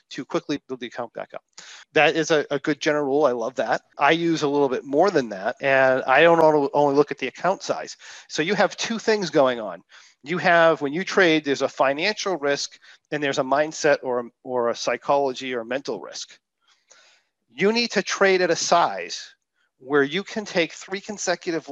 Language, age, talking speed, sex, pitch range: English, 40-59, 205 wpm, male, 130-170 Hz